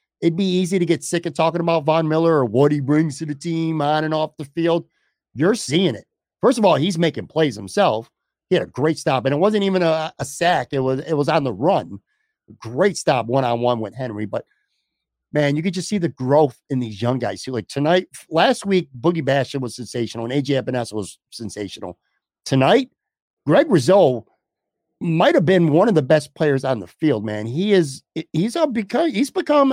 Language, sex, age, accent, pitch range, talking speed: English, male, 50-69, American, 140-190 Hz, 210 wpm